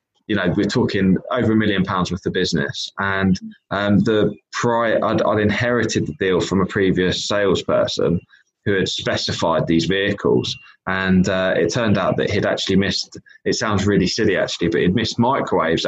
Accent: British